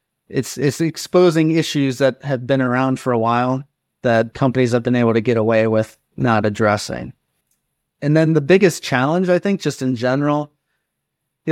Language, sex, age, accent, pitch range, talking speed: English, male, 30-49, American, 130-150 Hz, 170 wpm